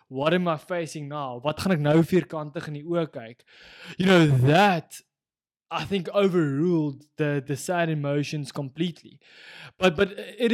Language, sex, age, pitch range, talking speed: English, male, 20-39, 145-180 Hz, 155 wpm